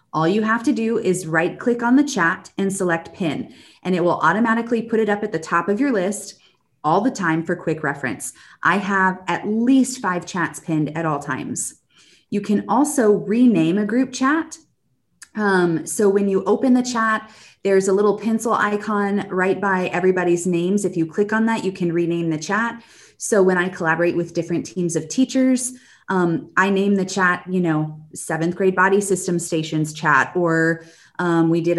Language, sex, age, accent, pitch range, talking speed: English, female, 20-39, American, 170-220 Hz, 195 wpm